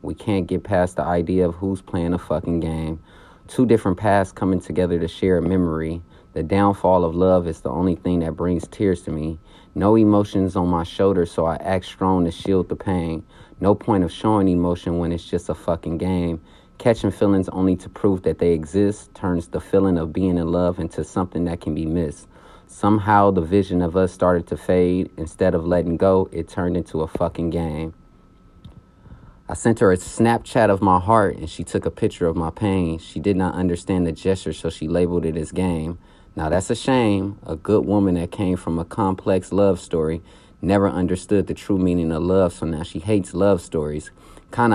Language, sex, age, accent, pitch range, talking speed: English, male, 30-49, American, 85-95 Hz, 205 wpm